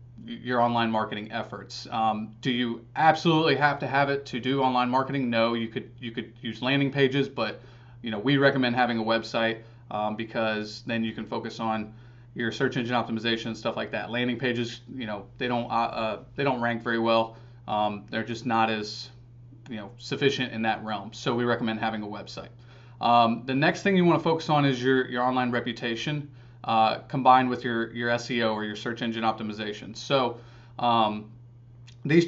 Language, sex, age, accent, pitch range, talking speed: English, male, 30-49, American, 115-130 Hz, 195 wpm